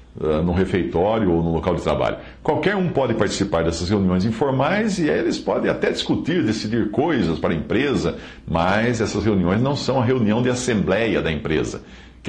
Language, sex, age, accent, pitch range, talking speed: Portuguese, male, 60-79, Brazilian, 85-110 Hz, 175 wpm